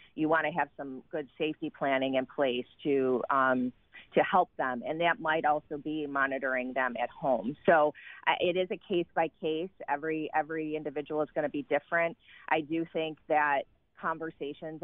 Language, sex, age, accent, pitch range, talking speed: English, female, 30-49, American, 140-155 Hz, 180 wpm